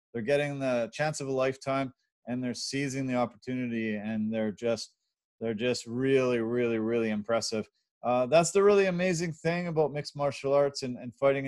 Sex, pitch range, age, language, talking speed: male, 115-135 Hz, 30-49, English, 180 wpm